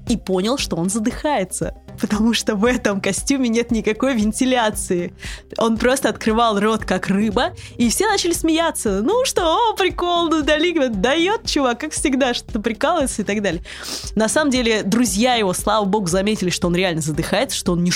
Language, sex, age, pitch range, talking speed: Russian, female, 20-39, 175-250 Hz, 175 wpm